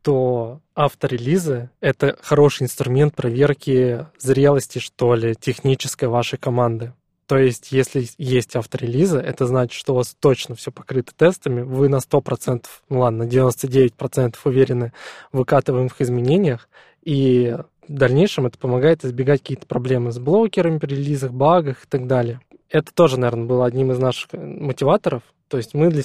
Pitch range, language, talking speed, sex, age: 125-145 Hz, Russian, 150 wpm, male, 20-39